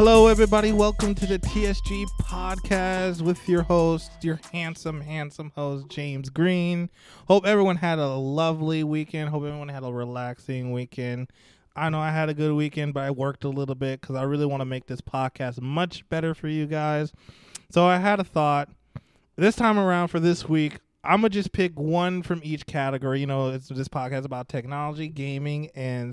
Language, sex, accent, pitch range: English, male, American, 135-175 Hz